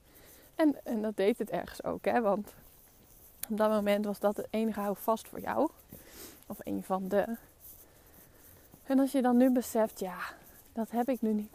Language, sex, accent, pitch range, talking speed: Dutch, female, Dutch, 210-245 Hz, 185 wpm